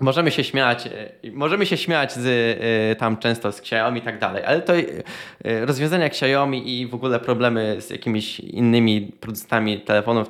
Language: Polish